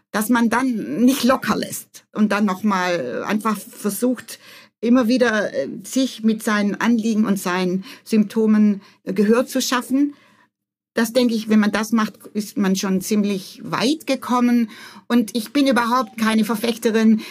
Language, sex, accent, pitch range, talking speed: German, female, German, 215-255 Hz, 145 wpm